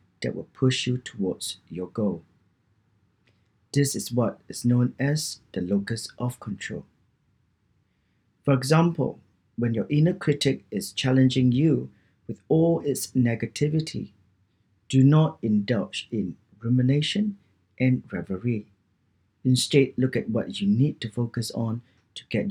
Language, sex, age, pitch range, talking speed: English, male, 40-59, 100-135 Hz, 130 wpm